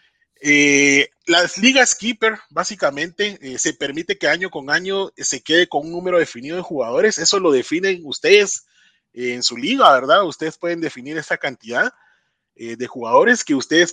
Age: 30-49